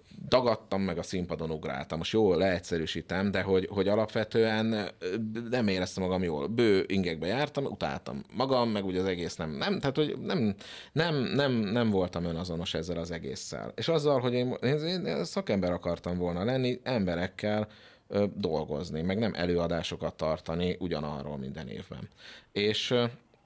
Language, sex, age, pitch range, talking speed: Hungarian, male, 30-49, 85-115 Hz, 145 wpm